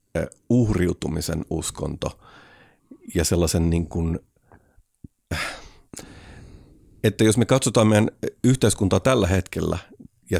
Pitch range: 85-105 Hz